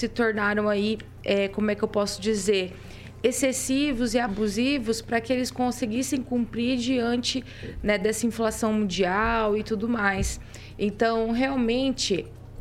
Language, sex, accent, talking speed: Portuguese, female, Brazilian, 130 wpm